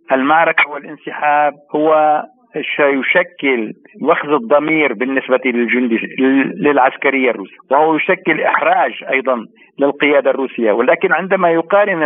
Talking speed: 90 wpm